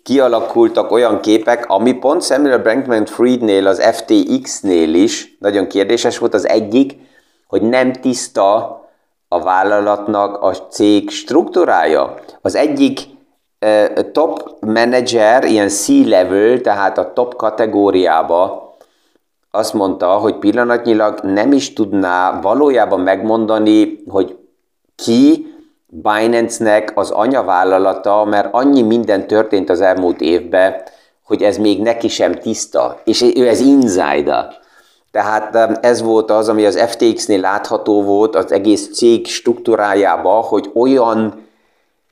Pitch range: 105-135 Hz